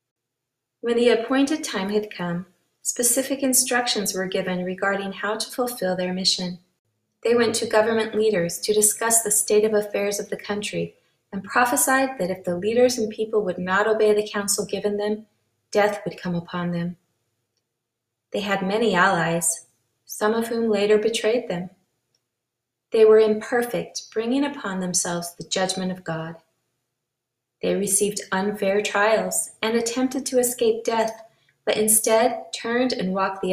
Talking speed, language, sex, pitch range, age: 150 wpm, English, female, 175-220 Hz, 30-49